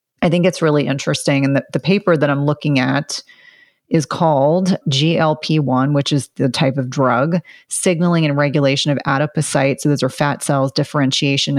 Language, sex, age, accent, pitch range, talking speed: English, female, 30-49, American, 140-160 Hz, 170 wpm